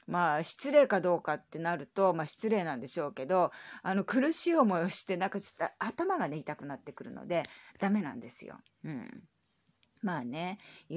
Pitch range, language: 165-235 Hz, Japanese